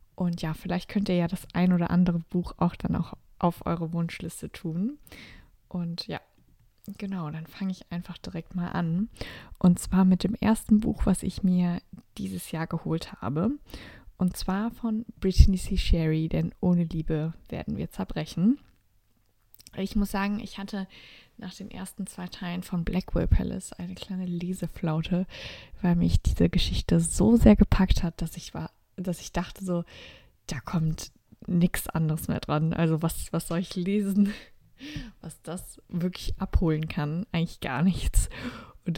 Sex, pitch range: female, 165-190 Hz